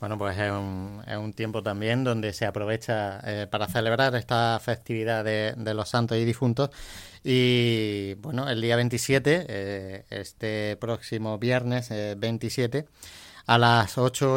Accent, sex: Spanish, male